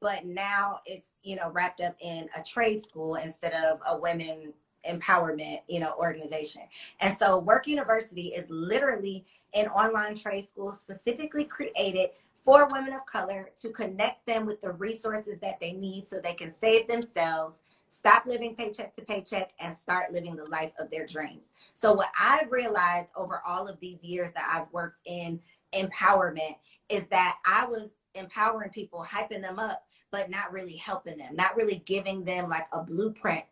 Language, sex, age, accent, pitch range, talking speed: English, female, 20-39, American, 170-220 Hz, 175 wpm